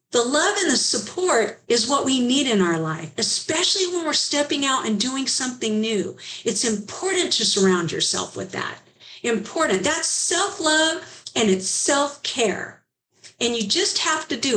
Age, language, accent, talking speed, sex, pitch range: 50-69, English, American, 165 wpm, female, 205-310 Hz